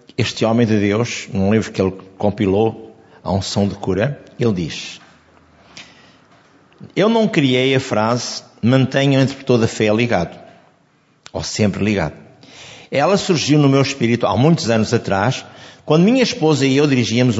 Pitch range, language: 110-155 Hz, Portuguese